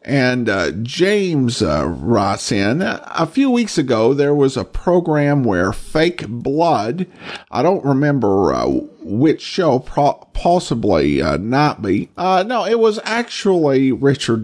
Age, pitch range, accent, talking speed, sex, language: 50-69, 120-175 Hz, American, 140 wpm, male, English